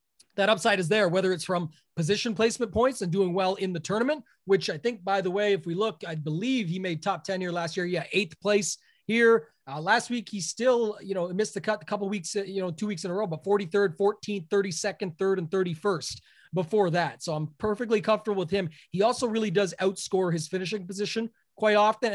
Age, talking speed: 30-49, 235 wpm